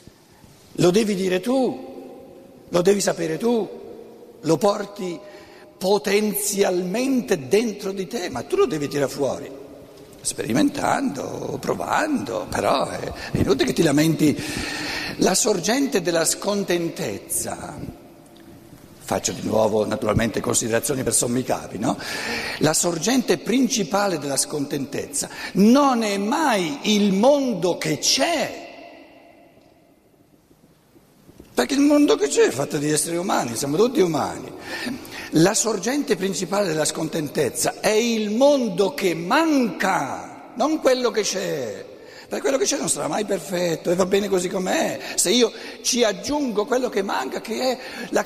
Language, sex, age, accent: Italian, male, 60-79, native